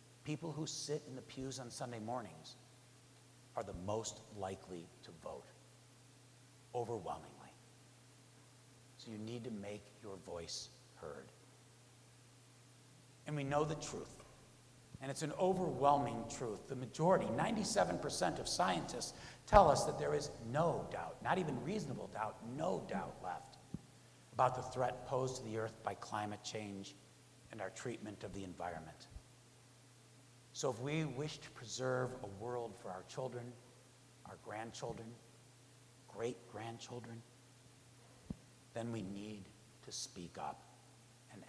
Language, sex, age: English, male, 60-79